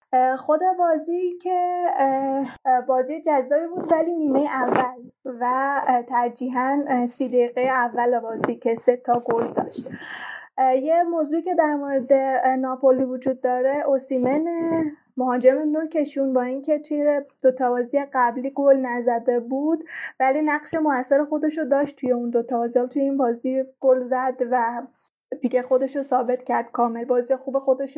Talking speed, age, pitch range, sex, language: 140 wpm, 10-29, 250-295 Hz, female, Persian